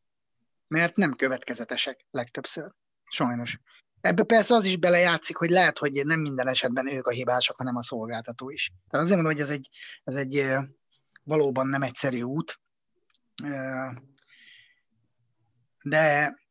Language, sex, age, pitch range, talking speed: Hungarian, male, 30-49, 120-145 Hz, 130 wpm